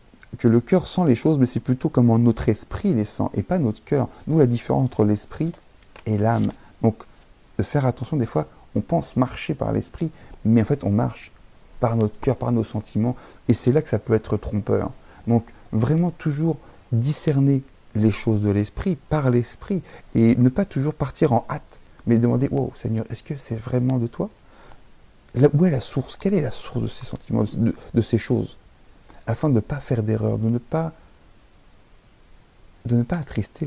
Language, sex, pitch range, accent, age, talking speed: French, male, 110-140 Hz, French, 40-59, 195 wpm